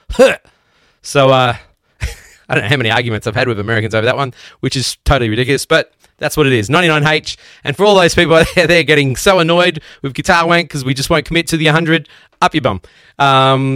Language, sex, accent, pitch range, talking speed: English, male, Australian, 130-175 Hz, 220 wpm